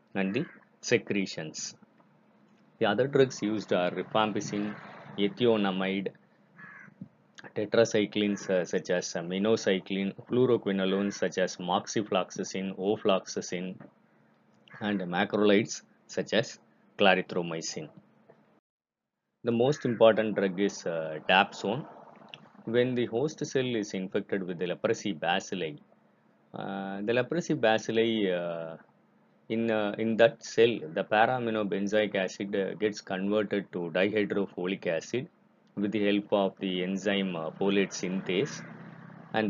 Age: 20-39